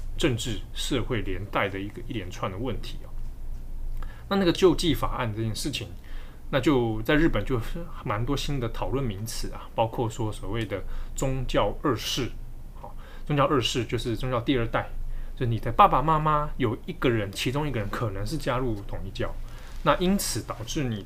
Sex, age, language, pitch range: male, 20-39, Chinese, 105-130 Hz